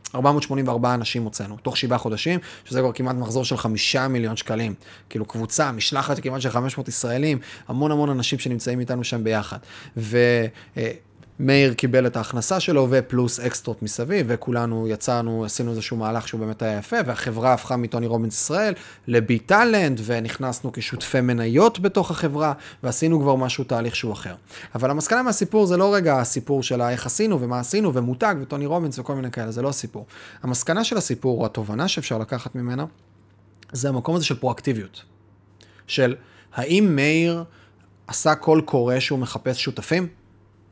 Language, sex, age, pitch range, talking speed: Hebrew, male, 30-49, 115-150 Hz, 145 wpm